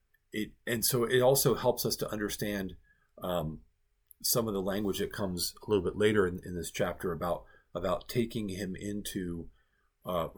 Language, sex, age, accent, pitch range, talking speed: English, male, 40-59, American, 80-105 Hz, 175 wpm